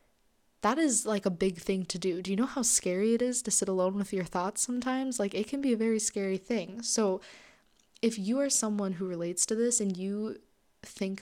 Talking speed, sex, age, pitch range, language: 225 wpm, female, 20-39, 190-230 Hz, English